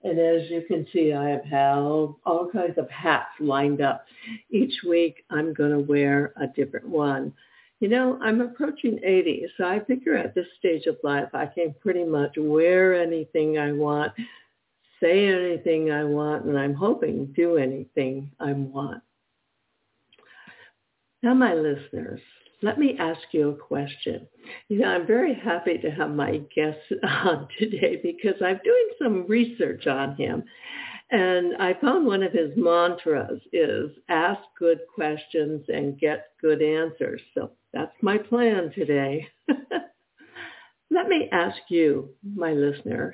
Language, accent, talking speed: English, American, 150 wpm